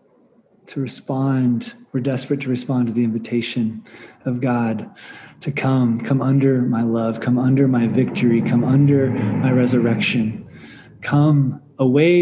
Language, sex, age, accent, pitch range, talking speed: English, male, 20-39, American, 120-140 Hz, 135 wpm